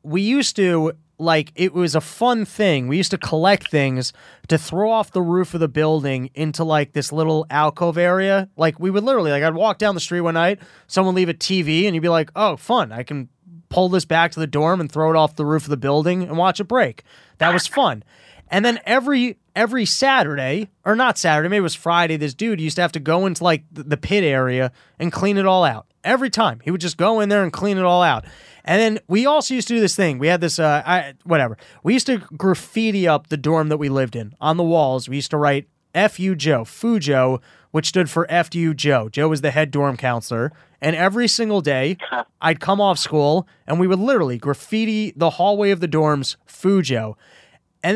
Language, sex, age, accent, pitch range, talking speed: English, male, 20-39, American, 150-195 Hz, 230 wpm